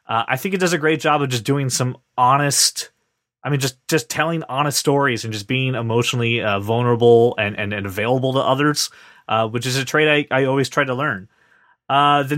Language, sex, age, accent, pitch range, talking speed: English, male, 30-49, American, 120-155 Hz, 220 wpm